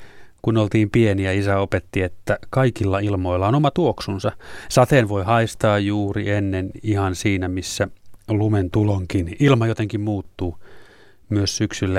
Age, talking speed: 30-49, 130 wpm